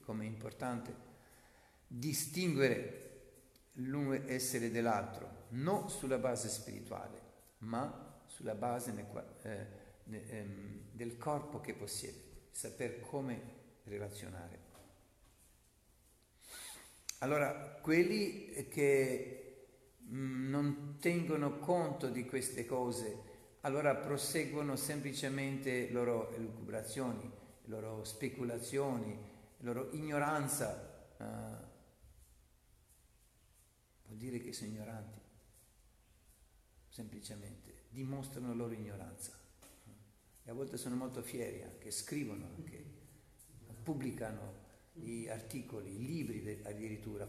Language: Italian